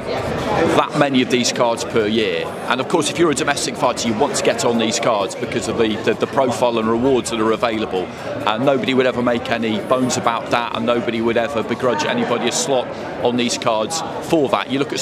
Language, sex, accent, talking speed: English, male, British, 230 wpm